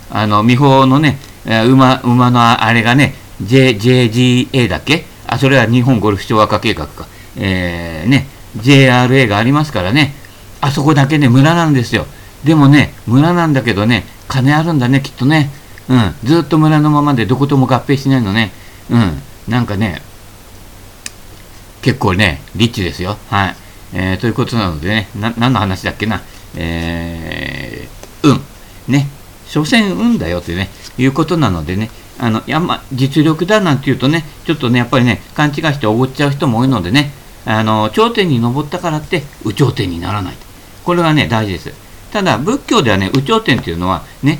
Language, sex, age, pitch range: Japanese, male, 50-69, 105-150 Hz